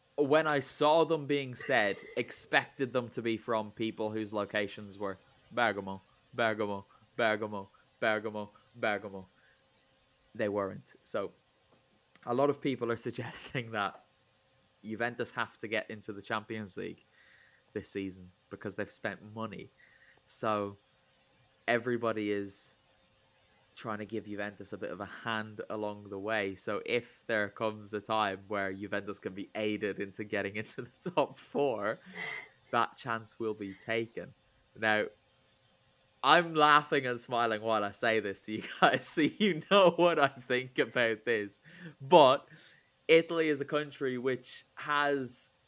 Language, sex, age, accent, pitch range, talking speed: English, male, 20-39, British, 105-130 Hz, 140 wpm